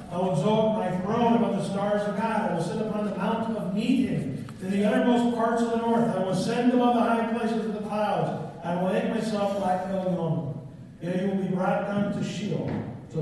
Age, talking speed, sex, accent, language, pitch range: 50-69, 230 wpm, male, American, English, 170-230 Hz